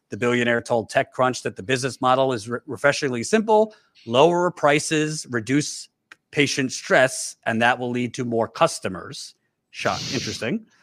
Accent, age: American, 40-59